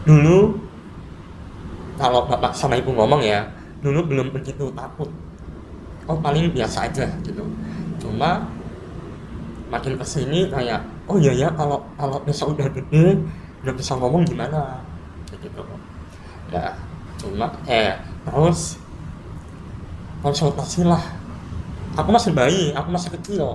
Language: Indonesian